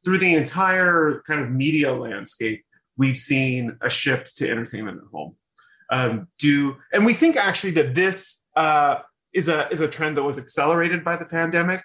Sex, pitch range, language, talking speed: male, 130-160 Hz, English, 175 wpm